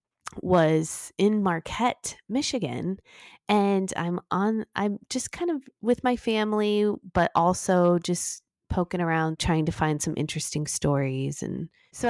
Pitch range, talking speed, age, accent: 165-220 Hz, 135 wpm, 20-39, American